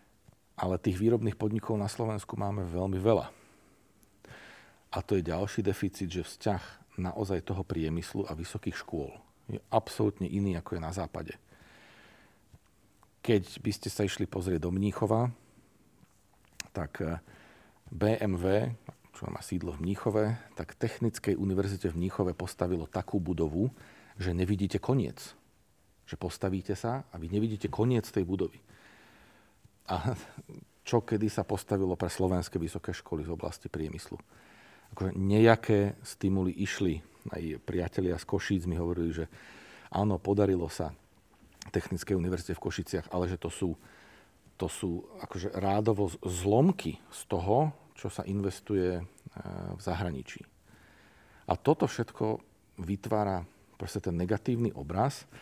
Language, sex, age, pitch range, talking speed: Slovak, male, 40-59, 90-105 Hz, 130 wpm